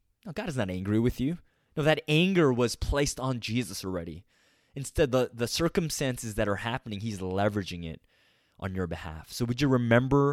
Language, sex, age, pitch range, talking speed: English, male, 20-39, 100-140 Hz, 185 wpm